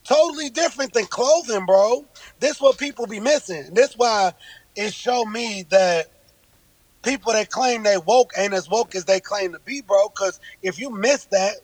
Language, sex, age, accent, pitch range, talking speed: English, male, 30-49, American, 190-245 Hz, 190 wpm